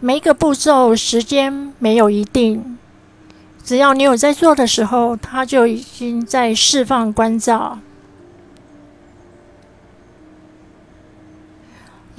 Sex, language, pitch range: female, Chinese, 215-260 Hz